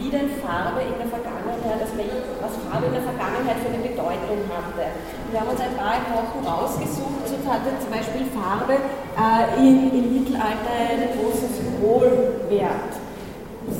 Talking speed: 150 wpm